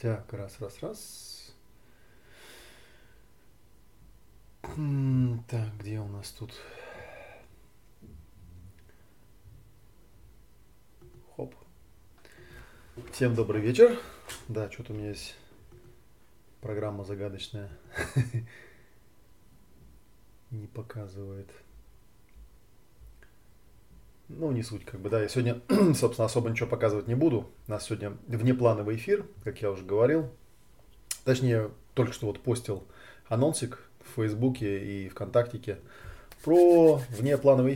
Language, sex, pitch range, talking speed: Russian, male, 105-130 Hz, 90 wpm